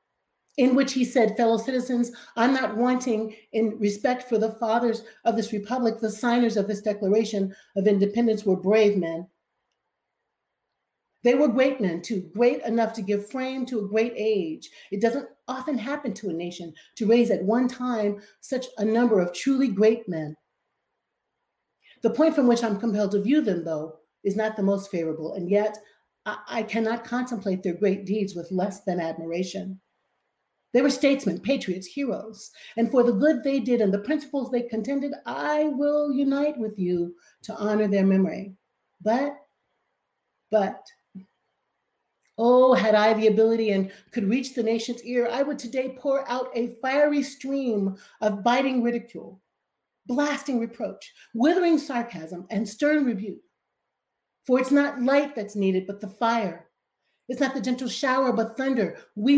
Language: English